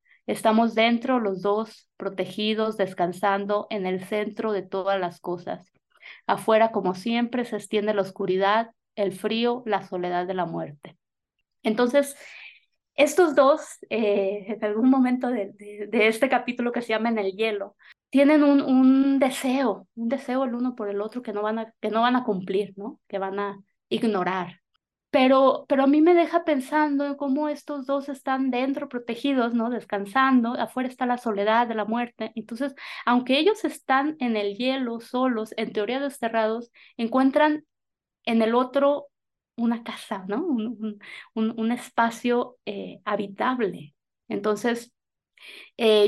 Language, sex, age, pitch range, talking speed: Spanish, female, 20-39, 205-260 Hz, 150 wpm